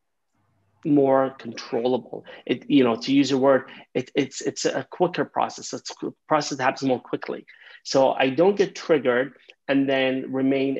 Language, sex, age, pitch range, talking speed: English, male, 30-49, 125-155 Hz, 165 wpm